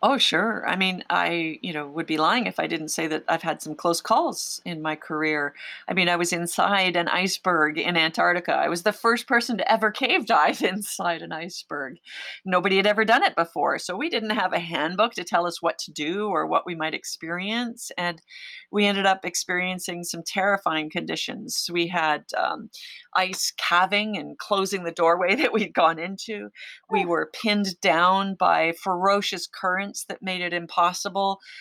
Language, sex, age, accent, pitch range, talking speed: English, female, 40-59, American, 170-210 Hz, 190 wpm